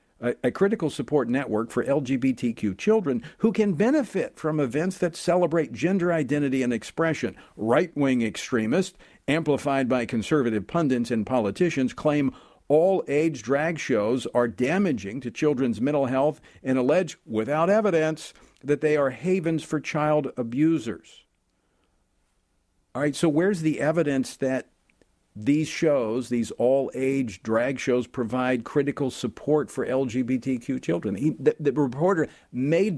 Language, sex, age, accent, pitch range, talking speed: English, male, 50-69, American, 125-165 Hz, 130 wpm